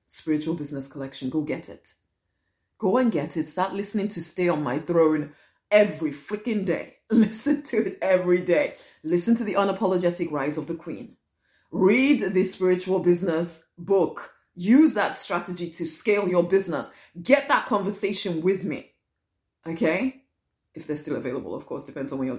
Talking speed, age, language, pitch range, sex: 165 wpm, 30-49, English, 145-180 Hz, female